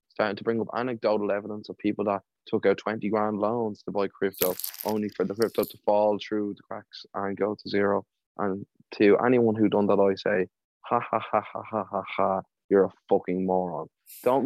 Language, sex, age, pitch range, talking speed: English, male, 20-39, 100-110 Hz, 210 wpm